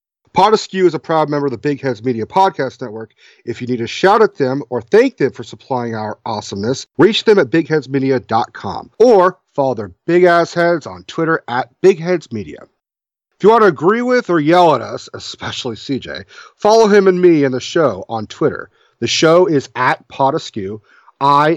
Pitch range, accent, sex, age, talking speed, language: 130-180 Hz, American, male, 40-59, 185 wpm, English